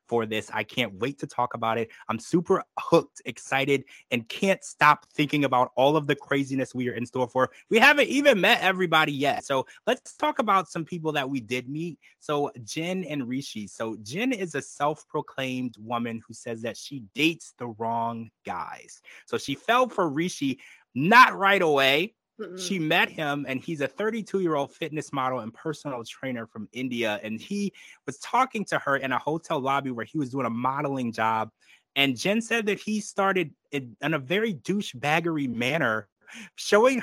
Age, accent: 20-39, American